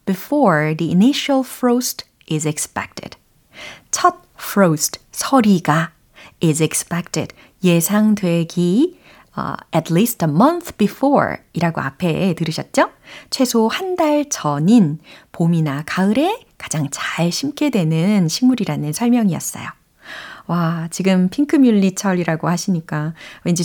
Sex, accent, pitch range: female, native, 160-250 Hz